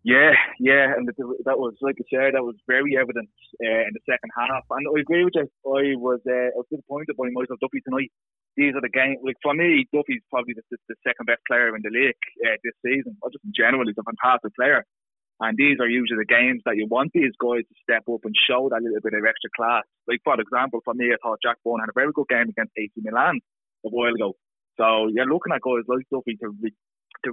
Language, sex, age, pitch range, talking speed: English, male, 20-39, 120-140 Hz, 245 wpm